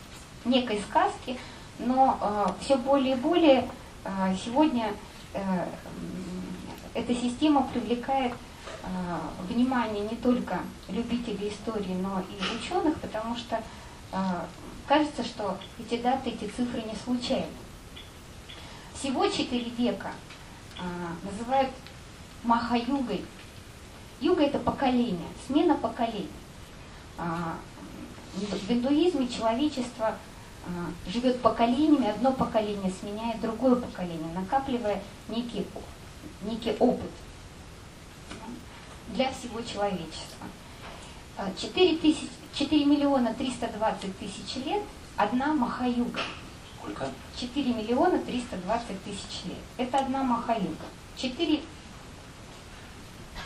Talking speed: 95 wpm